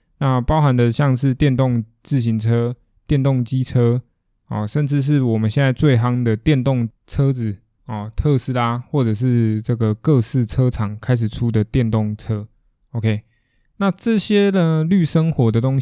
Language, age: Chinese, 20-39